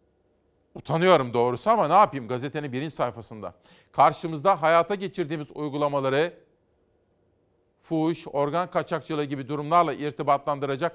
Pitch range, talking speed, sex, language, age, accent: 135-175 Hz, 100 wpm, male, Turkish, 40-59, native